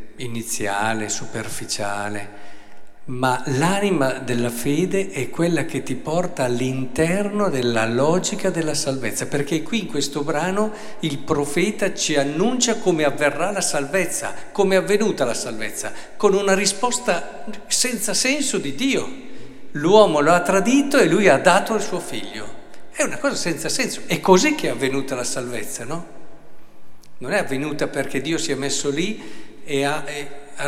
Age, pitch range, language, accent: 50-69, 120-170 Hz, Italian, native